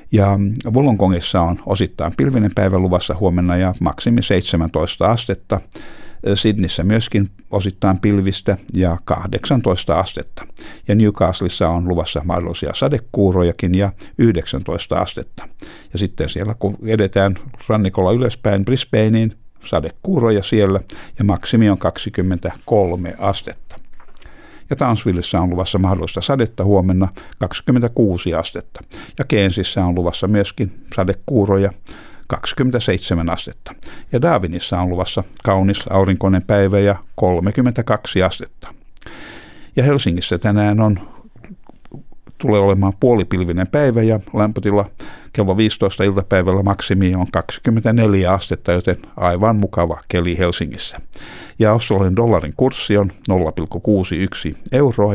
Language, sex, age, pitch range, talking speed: Finnish, male, 60-79, 90-110 Hz, 110 wpm